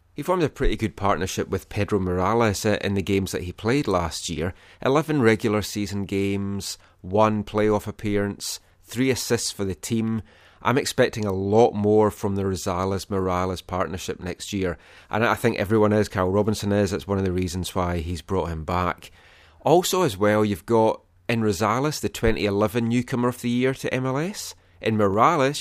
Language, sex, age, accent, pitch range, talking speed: English, male, 30-49, British, 95-115 Hz, 175 wpm